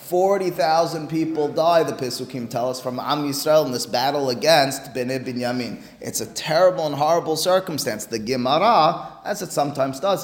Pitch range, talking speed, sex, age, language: 130-165 Hz, 170 wpm, male, 30-49, English